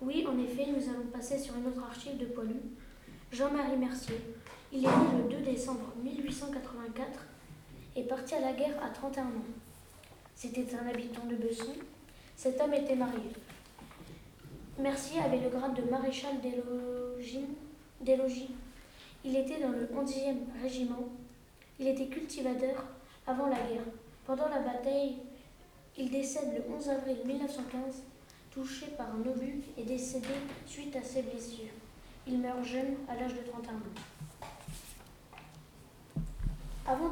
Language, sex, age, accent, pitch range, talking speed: French, female, 20-39, French, 245-275 Hz, 140 wpm